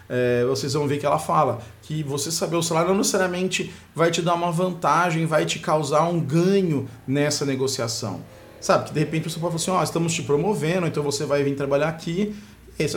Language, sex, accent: Portuguese, male, Brazilian